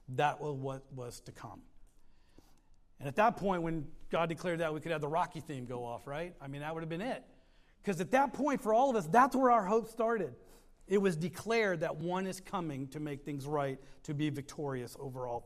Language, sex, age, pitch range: English, male, 40-59, 165-225 Hz